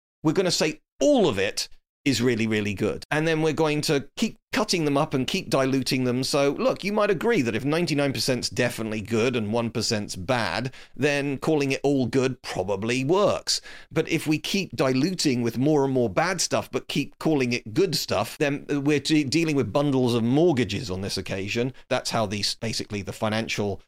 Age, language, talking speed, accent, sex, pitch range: 40-59, English, 195 wpm, British, male, 115-155 Hz